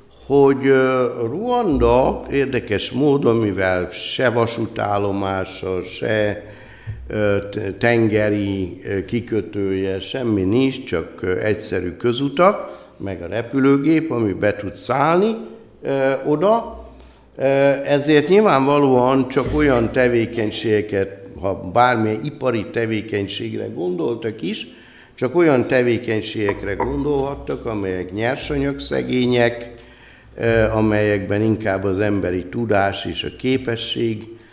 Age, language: 60-79, Hungarian